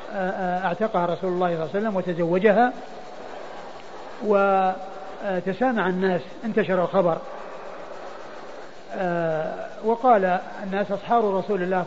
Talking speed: 85 wpm